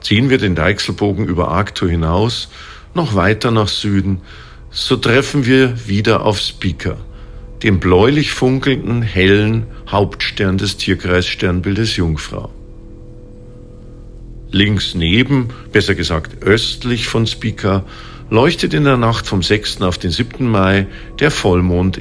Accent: German